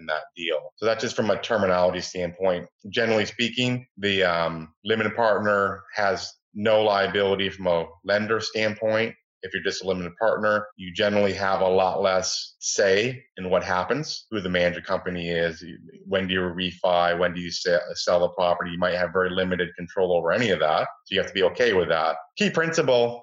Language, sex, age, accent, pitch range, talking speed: English, male, 30-49, American, 90-110 Hz, 190 wpm